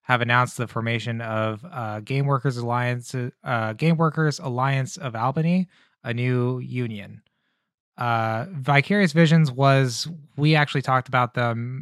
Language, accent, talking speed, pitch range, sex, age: English, American, 130 wpm, 115-140 Hz, male, 20-39